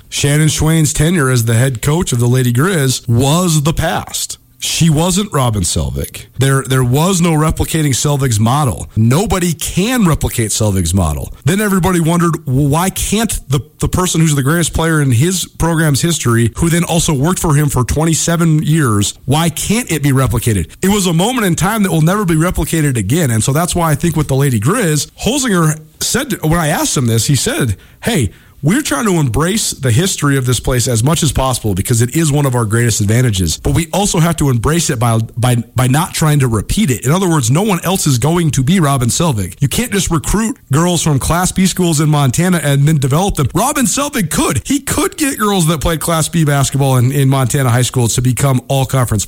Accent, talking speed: American, 215 wpm